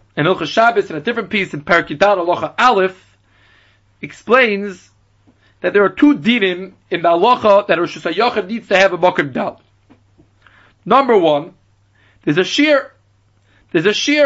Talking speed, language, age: 135 wpm, English, 30-49